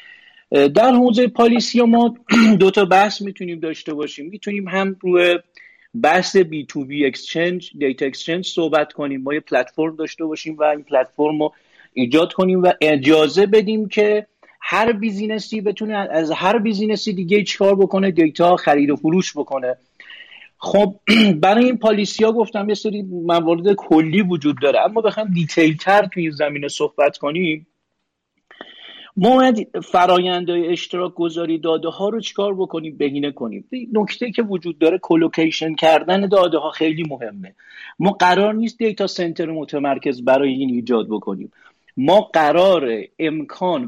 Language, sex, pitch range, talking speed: Persian, male, 155-205 Hz, 145 wpm